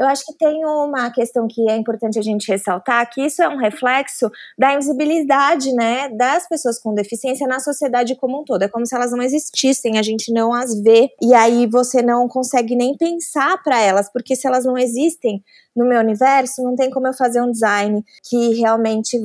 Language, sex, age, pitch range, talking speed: Portuguese, female, 20-39, 230-280 Hz, 205 wpm